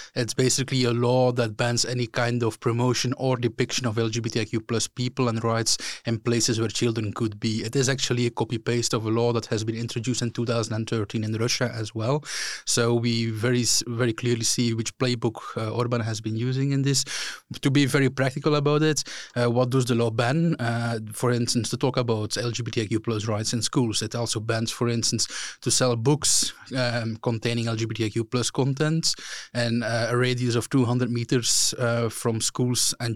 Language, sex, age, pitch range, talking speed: English, male, 20-39, 115-125 Hz, 185 wpm